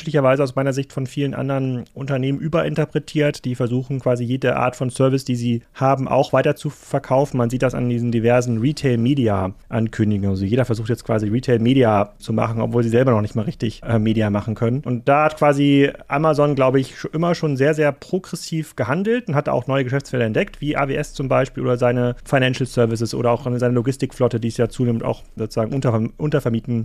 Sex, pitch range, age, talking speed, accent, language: male, 120-145 Hz, 30-49, 190 wpm, German, German